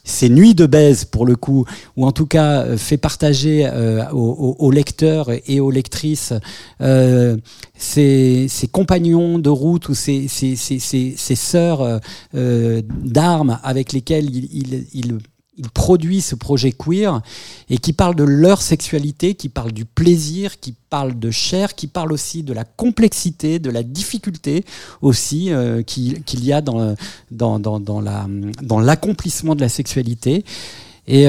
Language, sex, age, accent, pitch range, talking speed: French, male, 50-69, French, 120-155 Hz, 165 wpm